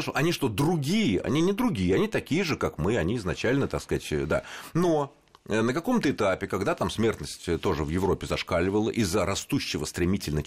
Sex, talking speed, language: male, 170 wpm, Russian